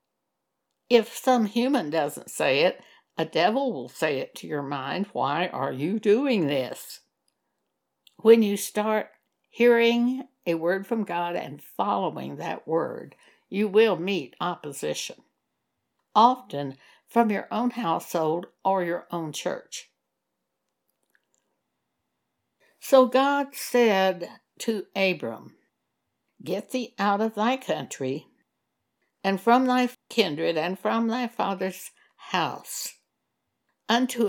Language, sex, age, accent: English, female, 60-79, American